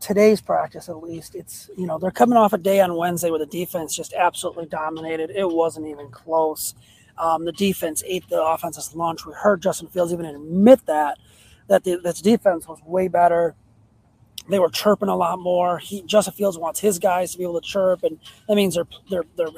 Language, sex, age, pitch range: English, male, 30-49, 165-210 Hz